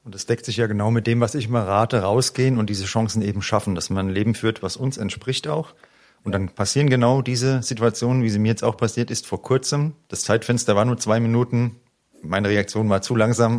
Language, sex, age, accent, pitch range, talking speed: German, male, 40-59, German, 100-115 Hz, 235 wpm